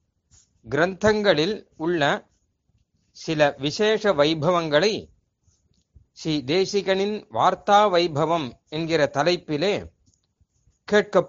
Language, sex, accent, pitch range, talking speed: Tamil, male, native, 140-205 Hz, 65 wpm